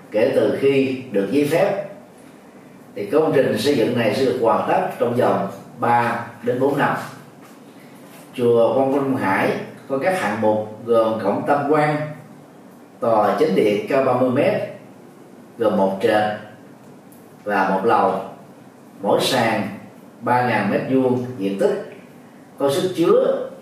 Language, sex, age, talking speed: Vietnamese, male, 30-49, 140 wpm